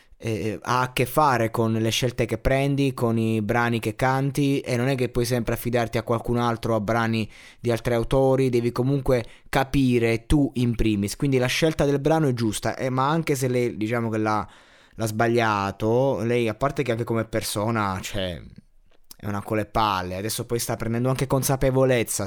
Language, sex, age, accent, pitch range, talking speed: Italian, male, 20-39, native, 110-130 Hz, 180 wpm